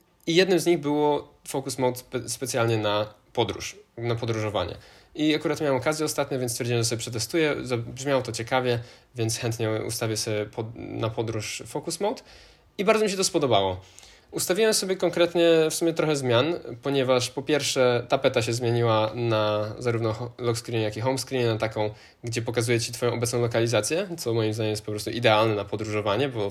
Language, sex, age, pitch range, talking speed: Polish, male, 20-39, 115-145 Hz, 175 wpm